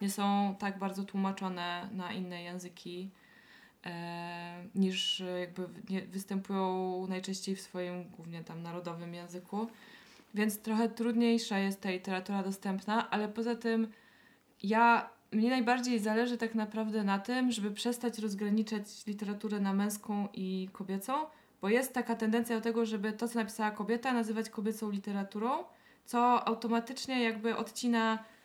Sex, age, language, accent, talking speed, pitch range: female, 20-39, Polish, native, 135 wpm, 195-235 Hz